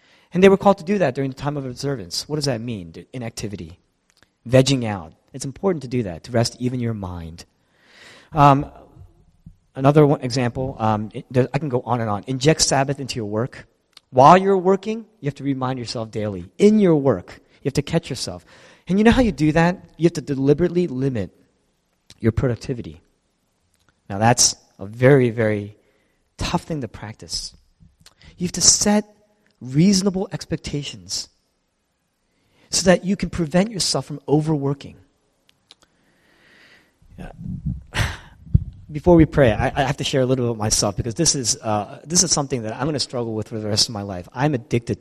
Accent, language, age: American, English, 30-49